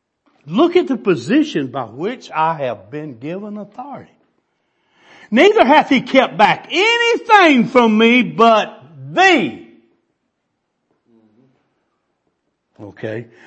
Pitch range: 200-325 Hz